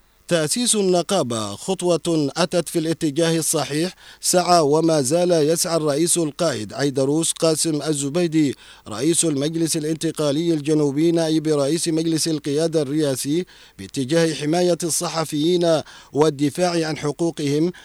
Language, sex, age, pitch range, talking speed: Arabic, male, 40-59, 150-170 Hz, 105 wpm